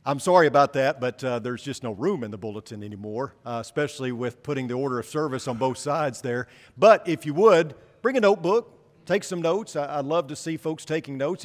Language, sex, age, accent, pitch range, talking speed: English, male, 50-69, American, 135-185 Hz, 230 wpm